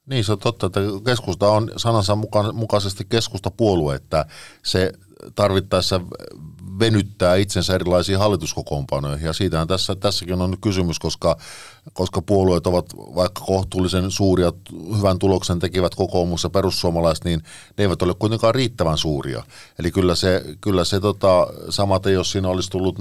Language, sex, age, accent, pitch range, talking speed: Finnish, male, 50-69, native, 85-100 Hz, 145 wpm